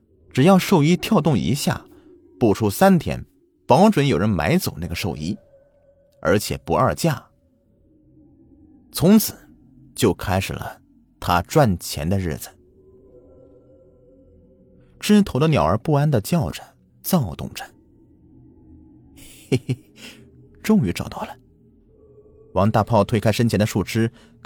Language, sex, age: Chinese, male, 30-49